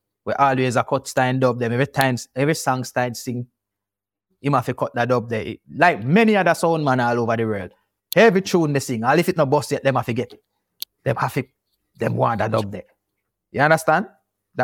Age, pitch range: 30-49, 100-145 Hz